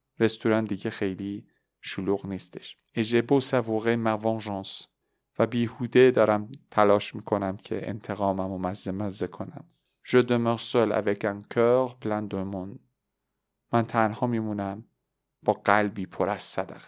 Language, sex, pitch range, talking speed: Persian, male, 100-125 Hz, 120 wpm